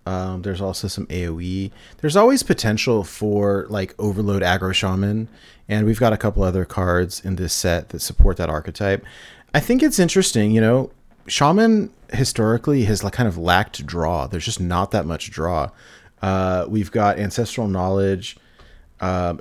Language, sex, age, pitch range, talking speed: English, male, 30-49, 90-115 Hz, 160 wpm